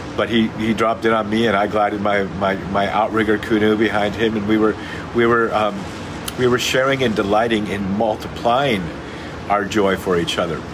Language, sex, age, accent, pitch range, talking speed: English, male, 50-69, American, 100-120 Hz, 195 wpm